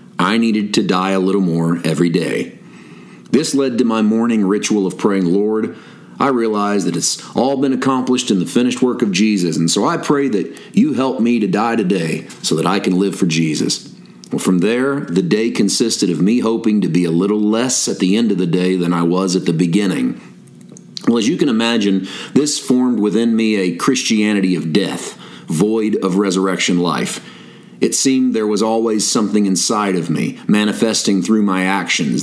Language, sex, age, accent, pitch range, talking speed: English, male, 40-59, American, 95-115 Hz, 195 wpm